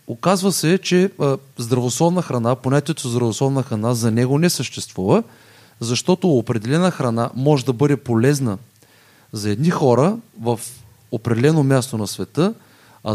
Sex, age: male, 30-49